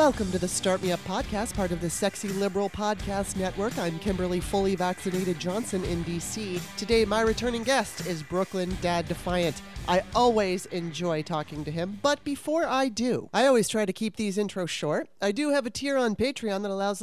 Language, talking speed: English, 195 wpm